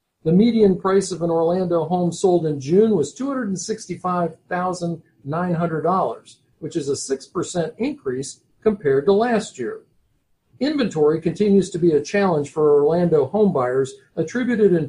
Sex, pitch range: male, 155-220 Hz